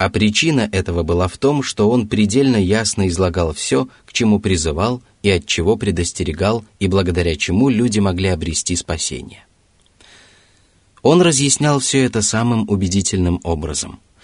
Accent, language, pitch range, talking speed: native, Russian, 90-110 Hz, 140 wpm